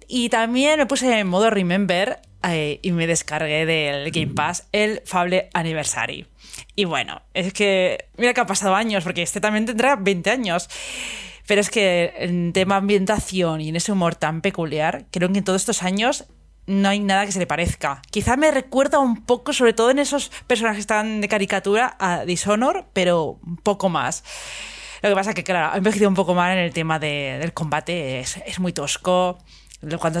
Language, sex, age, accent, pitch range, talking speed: Spanish, female, 20-39, Spanish, 160-205 Hz, 205 wpm